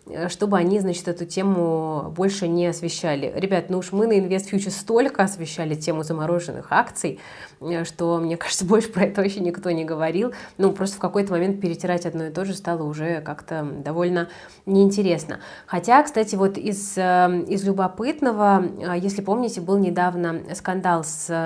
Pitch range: 170-195 Hz